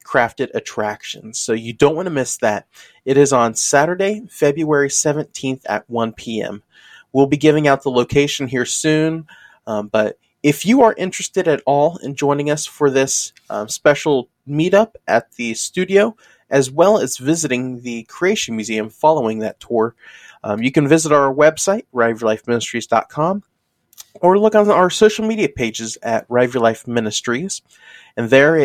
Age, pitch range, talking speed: 30-49, 115-155 Hz, 160 wpm